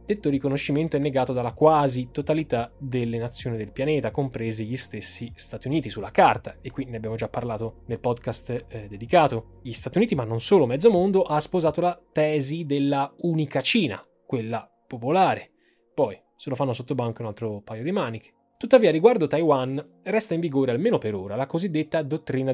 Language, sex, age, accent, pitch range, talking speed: Italian, male, 20-39, native, 115-150 Hz, 180 wpm